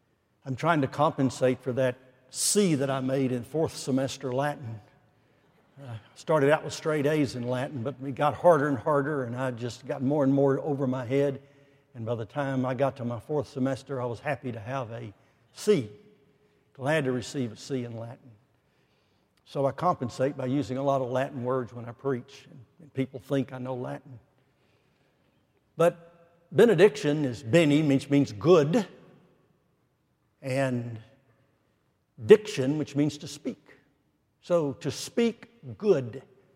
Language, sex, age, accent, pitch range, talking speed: English, male, 60-79, American, 130-155 Hz, 160 wpm